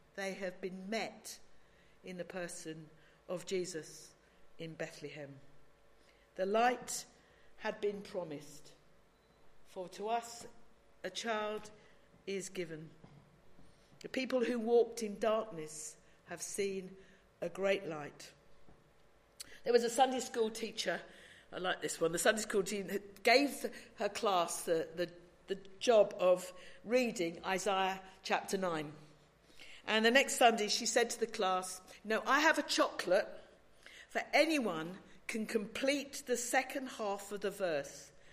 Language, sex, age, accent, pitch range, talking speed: English, female, 50-69, British, 180-245 Hz, 130 wpm